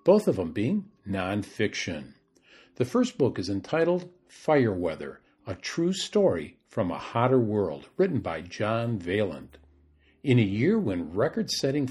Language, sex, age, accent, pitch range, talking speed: English, male, 50-69, American, 105-140 Hz, 145 wpm